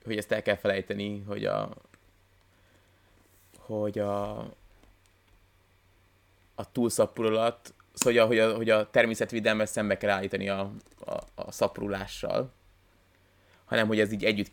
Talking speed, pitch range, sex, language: 115 wpm, 95-110 Hz, male, Hungarian